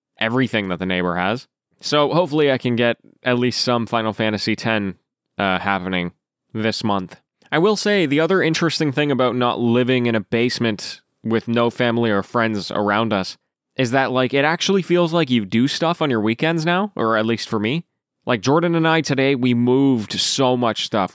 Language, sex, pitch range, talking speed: English, male, 110-140 Hz, 195 wpm